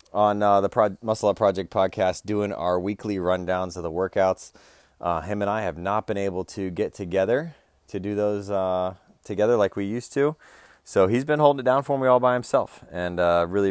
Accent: American